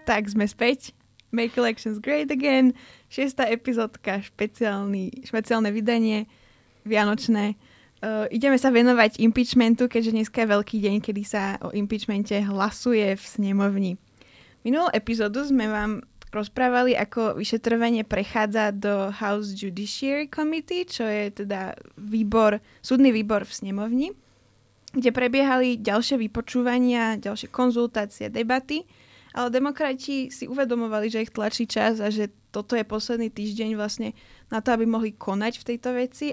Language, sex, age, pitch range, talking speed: Slovak, female, 20-39, 210-250 Hz, 130 wpm